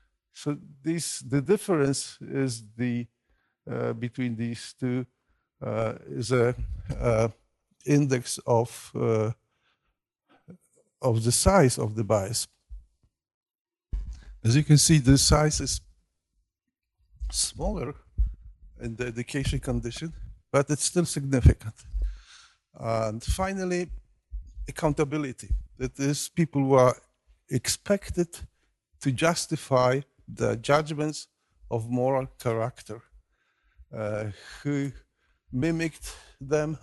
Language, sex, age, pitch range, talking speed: Polish, male, 50-69, 95-140 Hz, 95 wpm